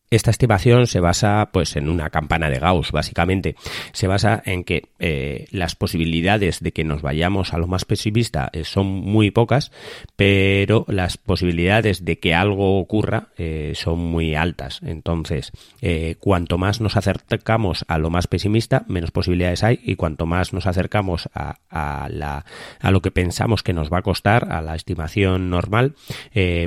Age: 30-49